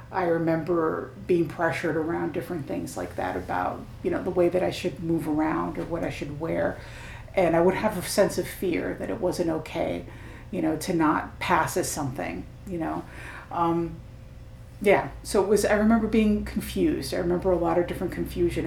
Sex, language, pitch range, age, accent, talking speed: female, English, 135-195 Hz, 50-69, American, 195 wpm